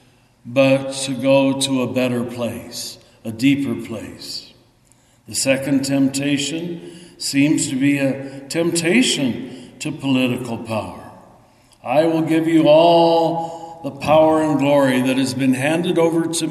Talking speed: 130 wpm